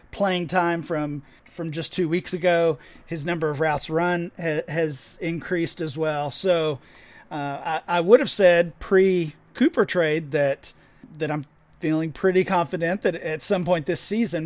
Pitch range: 145-175 Hz